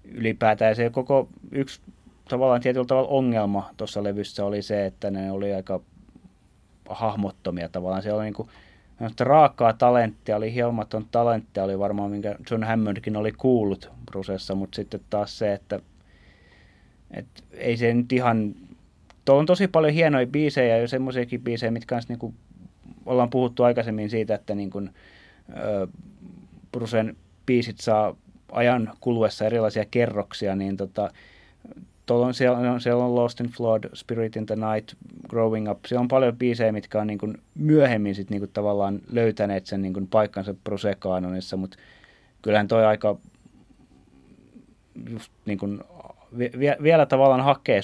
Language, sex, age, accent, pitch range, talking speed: Finnish, male, 30-49, native, 100-120 Hz, 140 wpm